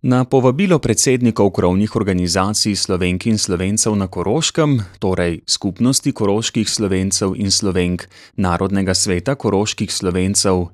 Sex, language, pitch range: male, German, 90-115 Hz